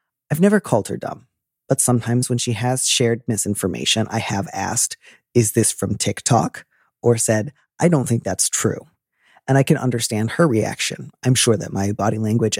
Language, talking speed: English, 180 wpm